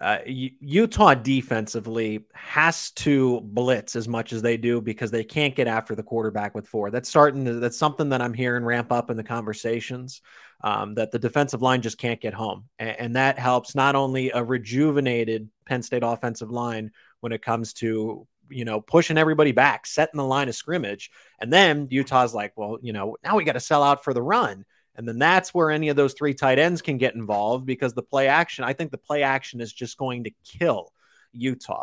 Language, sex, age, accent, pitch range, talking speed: English, male, 30-49, American, 115-140 Hz, 210 wpm